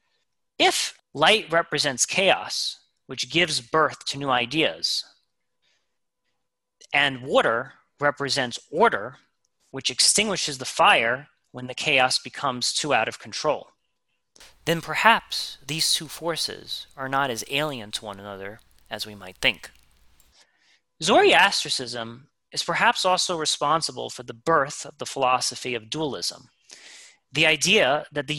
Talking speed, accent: 125 wpm, American